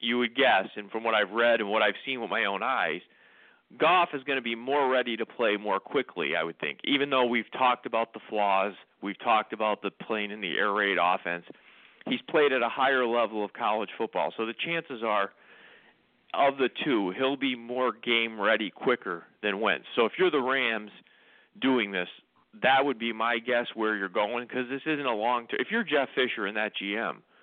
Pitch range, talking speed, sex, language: 105-130 Hz, 215 wpm, male, English